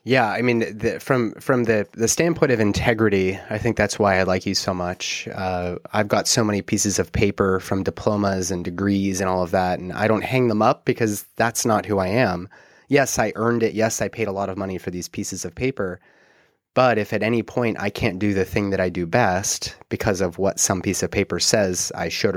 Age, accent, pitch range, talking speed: 30-49, American, 95-115 Hz, 235 wpm